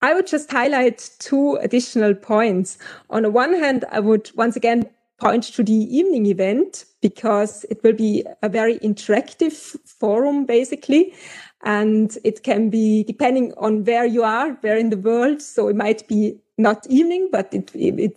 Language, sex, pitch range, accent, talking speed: English, female, 210-250 Hz, German, 170 wpm